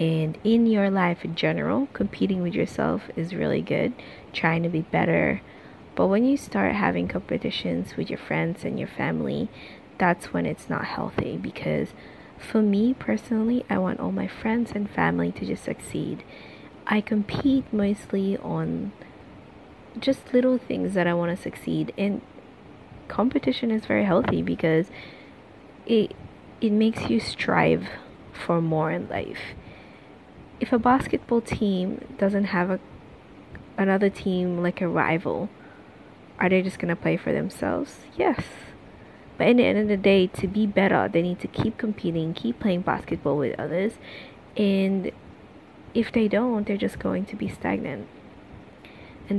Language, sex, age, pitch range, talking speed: English, female, 20-39, 175-225 Hz, 150 wpm